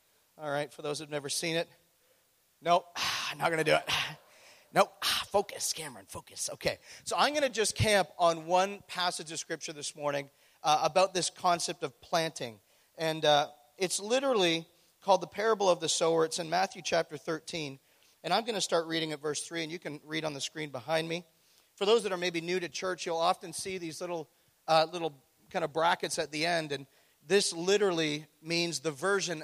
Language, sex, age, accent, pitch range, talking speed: English, male, 40-59, American, 150-185 Hz, 195 wpm